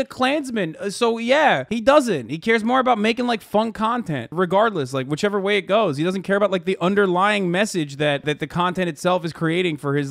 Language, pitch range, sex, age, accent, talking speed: English, 140-190 Hz, male, 20-39, American, 220 wpm